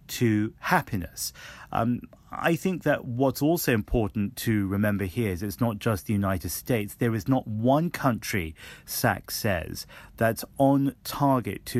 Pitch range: 100-130 Hz